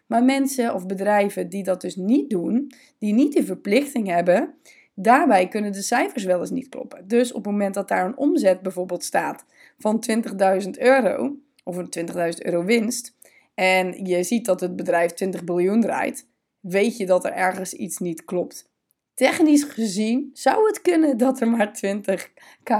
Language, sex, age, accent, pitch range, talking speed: Dutch, female, 20-39, Dutch, 185-260 Hz, 175 wpm